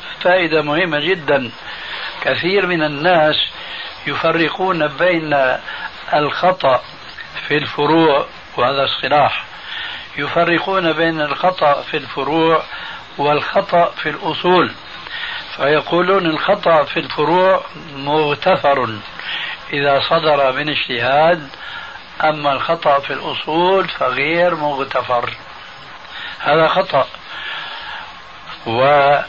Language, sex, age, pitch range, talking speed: Arabic, male, 60-79, 145-175 Hz, 80 wpm